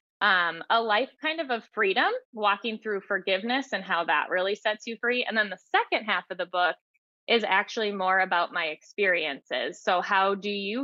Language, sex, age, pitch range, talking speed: English, female, 20-39, 190-230 Hz, 195 wpm